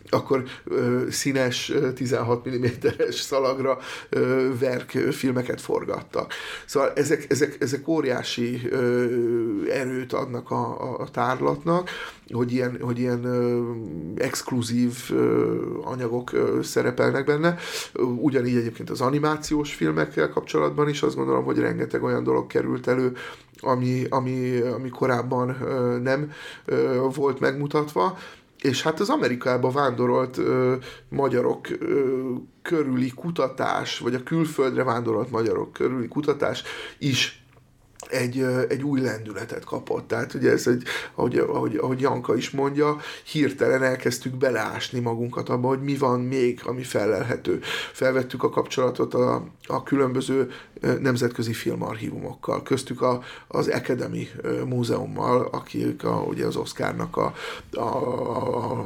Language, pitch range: Hungarian, 120-135 Hz